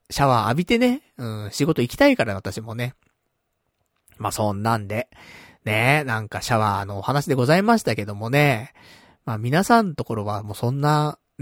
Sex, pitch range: male, 105-165 Hz